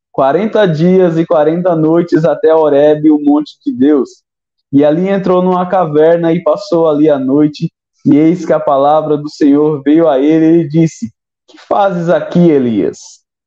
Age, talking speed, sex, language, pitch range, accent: 20-39, 165 wpm, male, Portuguese, 150-180 Hz, Brazilian